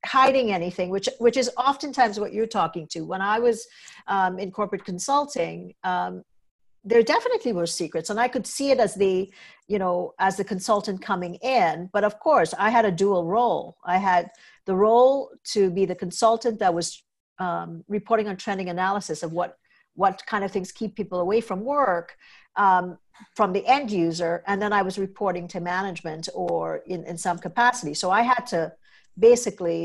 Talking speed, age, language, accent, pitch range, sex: 185 wpm, 50-69, English, American, 175-225 Hz, female